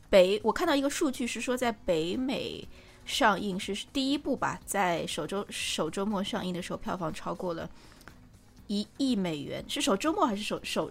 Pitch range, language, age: 180-245 Hz, Chinese, 20-39